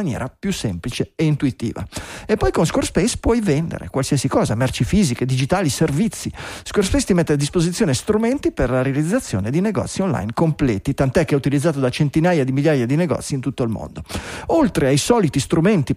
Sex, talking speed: male, 180 wpm